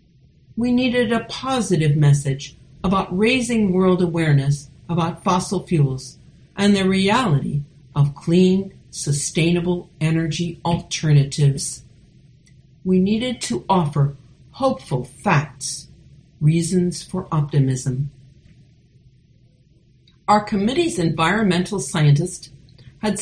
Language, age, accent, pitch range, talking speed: English, 50-69, American, 140-190 Hz, 90 wpm